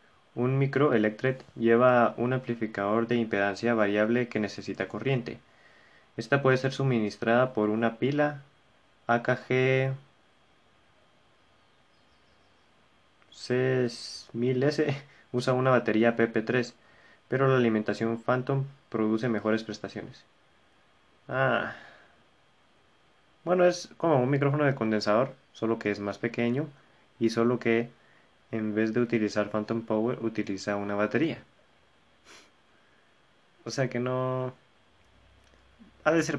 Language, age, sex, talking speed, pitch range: Spanish, 20-39, male, 105 wpm, 105-125 Hz